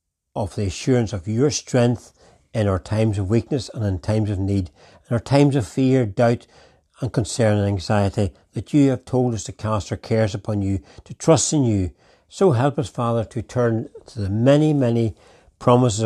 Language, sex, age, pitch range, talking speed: English, male, 60-79, 100-125 Hz, 195 wpm